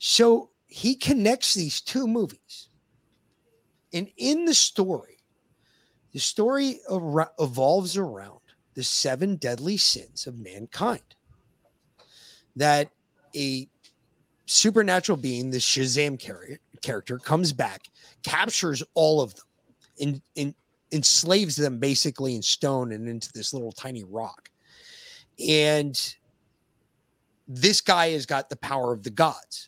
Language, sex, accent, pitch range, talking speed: English, male, American, 130-170 Hz, 115 wpm